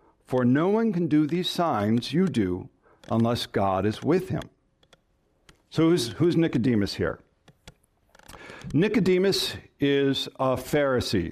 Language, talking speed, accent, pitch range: English, 120 wpm, American, 120-165 Hz